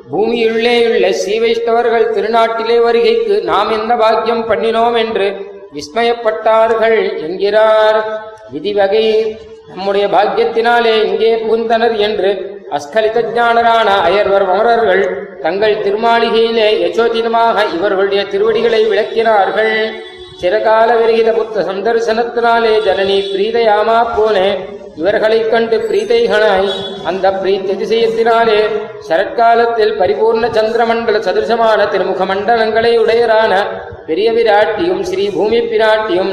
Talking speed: 80 wpm